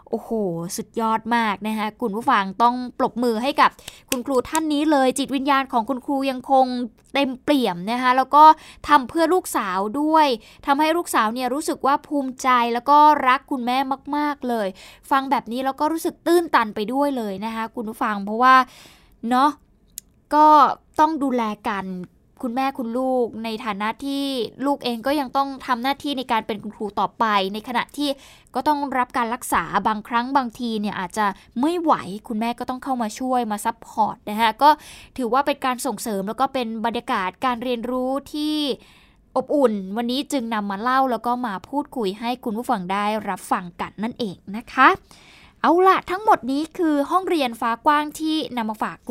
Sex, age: female, 20-39